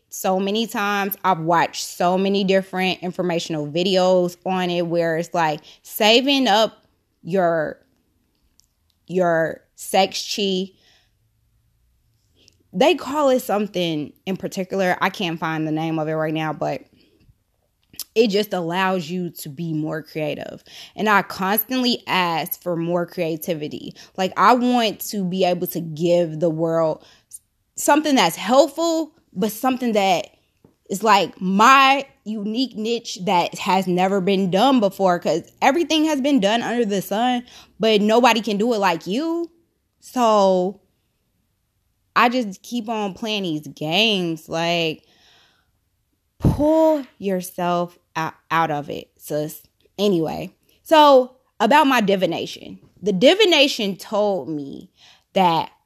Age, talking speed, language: 20-39, 130 wpm, English